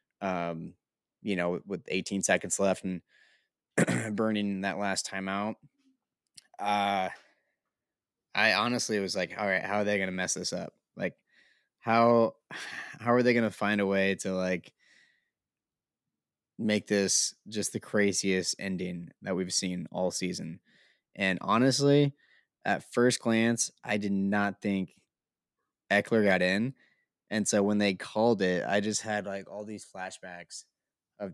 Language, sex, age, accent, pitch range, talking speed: English, male, 20-39, American, 95-105 Hz, 145 wpm